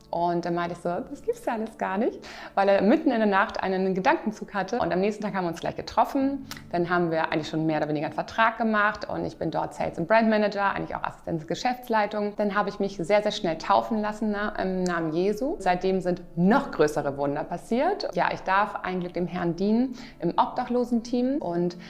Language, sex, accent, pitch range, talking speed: German, female, German, 175-210 Hz, 225 wpm